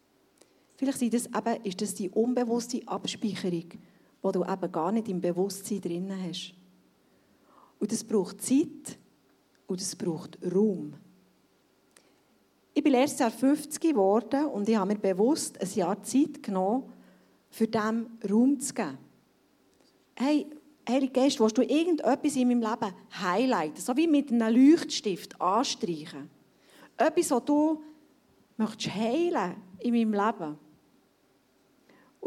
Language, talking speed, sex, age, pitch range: German, 130 wpm, female, 40-59, 200-265 Hz